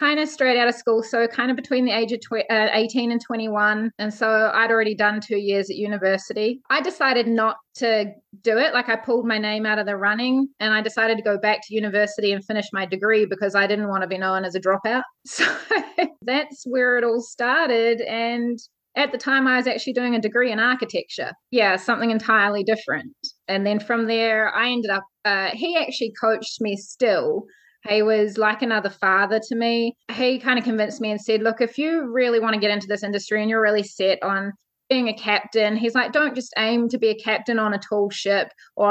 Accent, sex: Australian, female